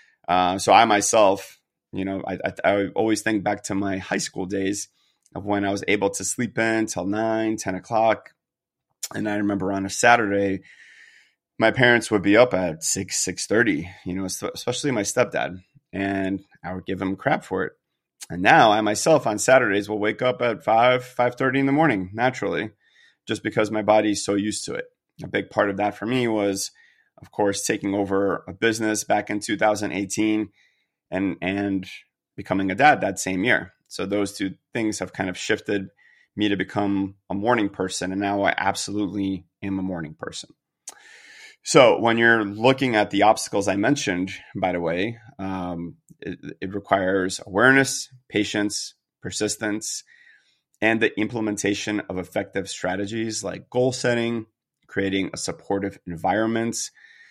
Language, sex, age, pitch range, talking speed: English, male, 30-49, 95-110 Hz, 170 wpm